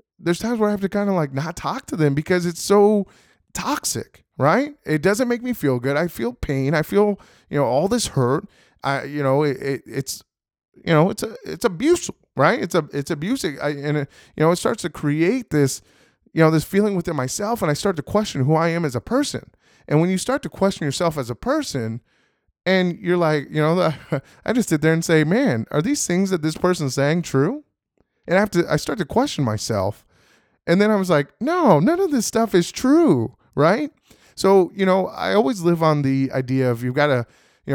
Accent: American